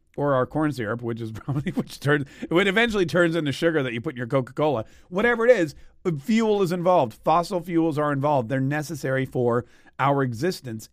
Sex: male